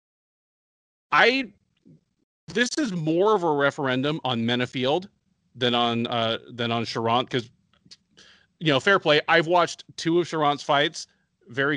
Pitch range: 125-170 Hz